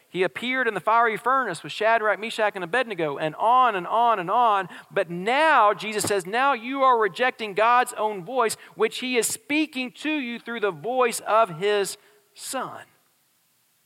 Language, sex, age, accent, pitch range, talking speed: English, male, 50-69, American, 135-205 Hz, 175 wpm